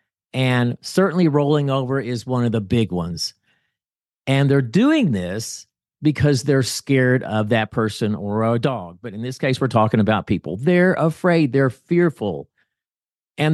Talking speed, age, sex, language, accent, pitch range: 160 wpm, 50-69, male, English, American, 115-155 Hz